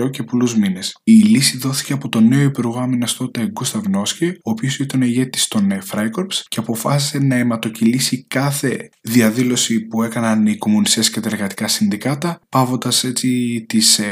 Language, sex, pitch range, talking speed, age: Greek, male, 110-165 Hz, 150 wpm, 20-39